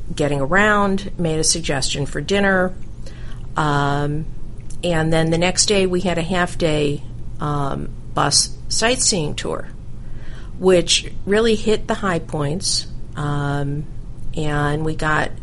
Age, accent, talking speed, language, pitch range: 50-69, American, 120 wpm, English, 140-180 Hz